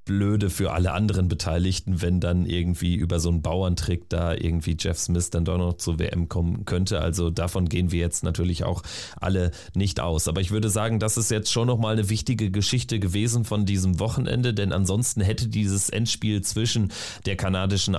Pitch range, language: 95-115 Hz, German